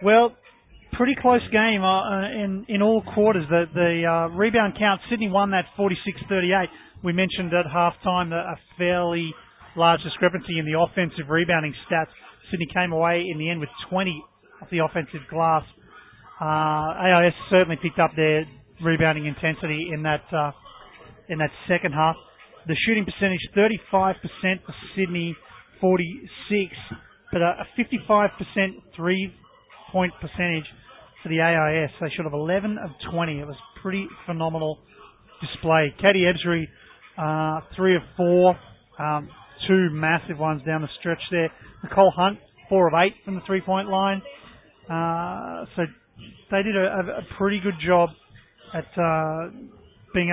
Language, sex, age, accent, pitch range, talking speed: English, male, 30-49, Australian, 160-190 Hz, 145 wpm